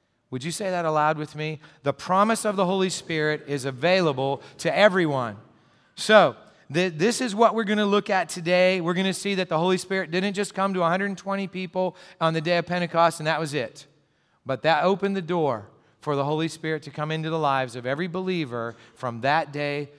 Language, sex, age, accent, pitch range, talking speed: English, male, 40-59, American, 130-180 Hz, 210 wpm